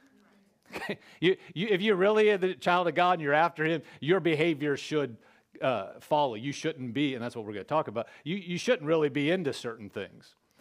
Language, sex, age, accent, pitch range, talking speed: English, male, 40-59, American, 140-190 Hz, 200 wpm